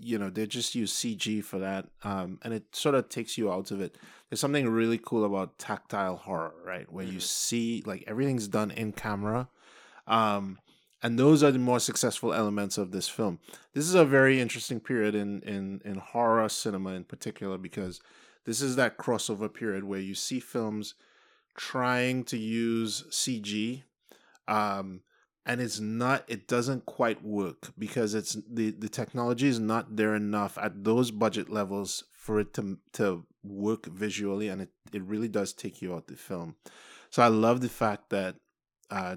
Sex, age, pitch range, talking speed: male, 20-39, 100-120 Hz, 180 wpm